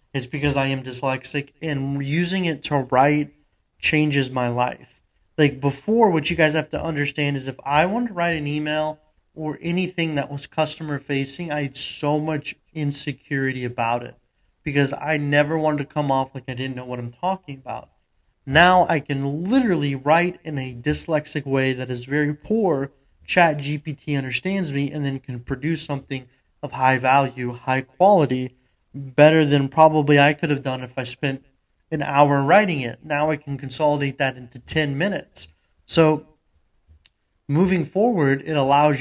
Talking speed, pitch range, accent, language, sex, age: 170 wpm, 130-155 Hz, American, English, male, 20-39